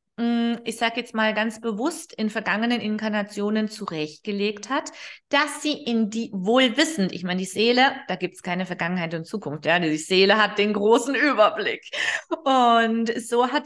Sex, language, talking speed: female, German, 165 wpm